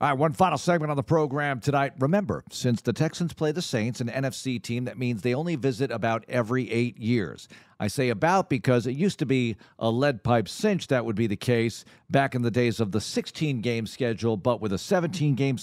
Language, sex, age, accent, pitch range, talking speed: English, male, 50-69, American, 115-145 Hz, 220 wpm